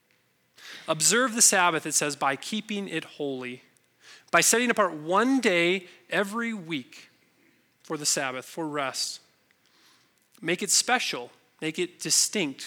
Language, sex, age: English, male, 30-49